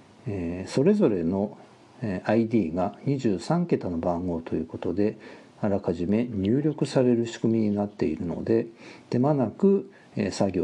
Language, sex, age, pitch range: Japanese, male, 50-69, 100-140 Hz